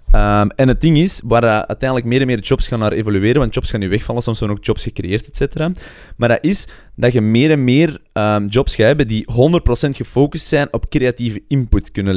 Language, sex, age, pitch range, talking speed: Dutch, male, 20-39, 110-140 Hz, 220 wpm